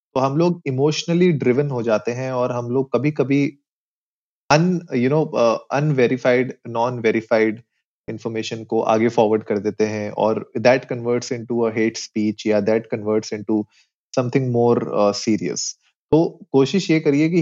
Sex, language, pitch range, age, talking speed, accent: male, Hindi, 110-140 Hz, 30-49, 160 wpm, native